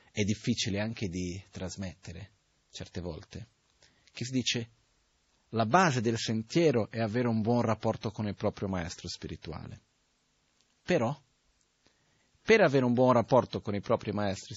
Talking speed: 140 wpm